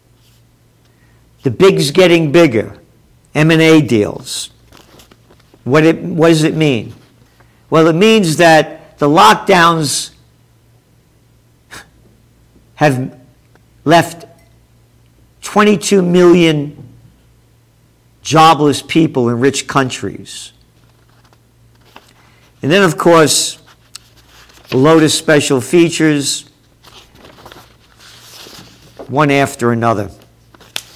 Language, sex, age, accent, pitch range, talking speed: English, male, 50-69, American, 125-170 Hz, 70 wpm